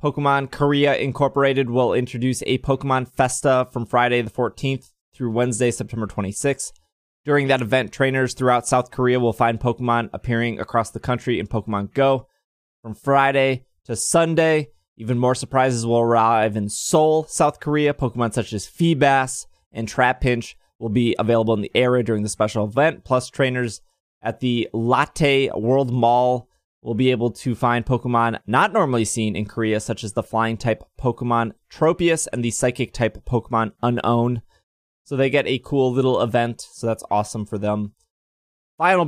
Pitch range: 115-135 Hz